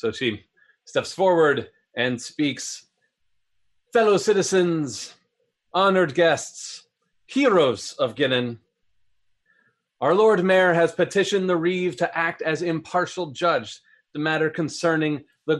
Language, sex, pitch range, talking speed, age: English, male, 130-185 Hz, 110 wpm, 30-49